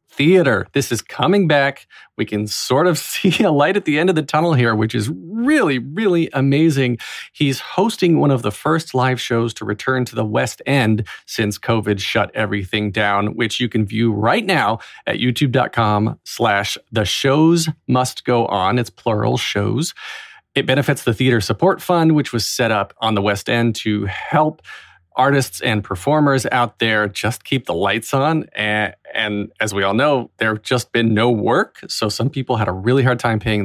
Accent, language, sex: American, English, male